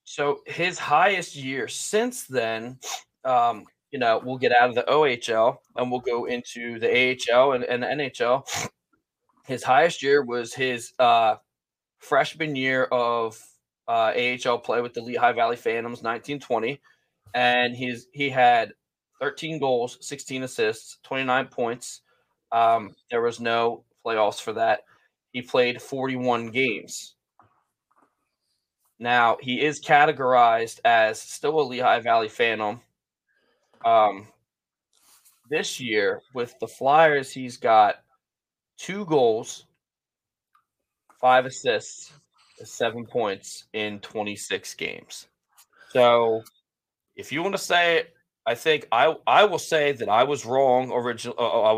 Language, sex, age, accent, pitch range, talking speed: English, male, 20-39, American, 120-145 Hz, 125 wpm